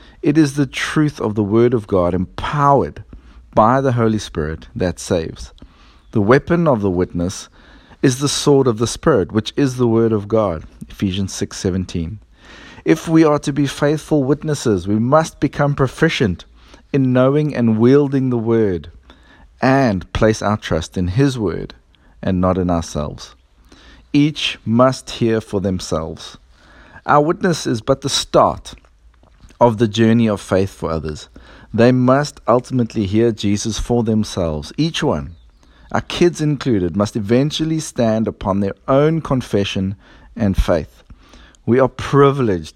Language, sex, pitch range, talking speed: English, male, 90-130 Hz, 145 wpm